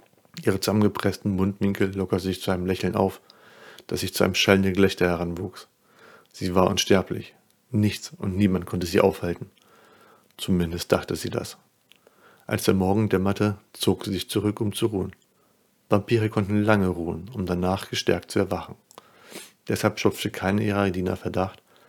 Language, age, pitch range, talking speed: German, 40-59, 90-105 Hz, 150 wpm